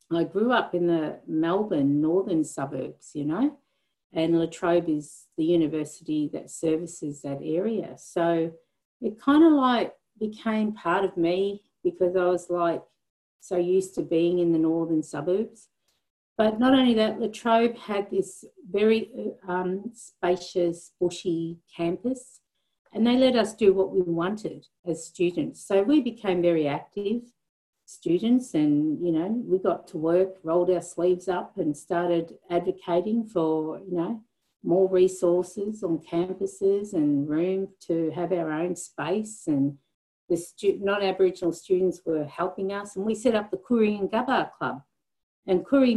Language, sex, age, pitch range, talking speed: English, female, 50-69, 165-210 Hz, 155 wpm